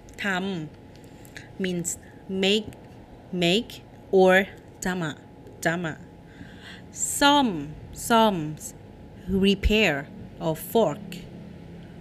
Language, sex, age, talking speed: English, female, 30-49, 60 wpm